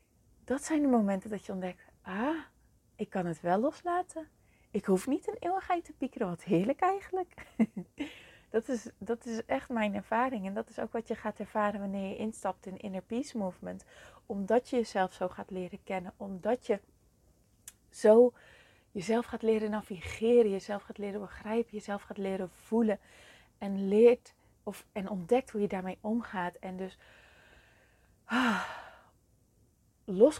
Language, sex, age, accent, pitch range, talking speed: Dutch, female, 30-49, Dutch, 185-225 Hz, 150 wpm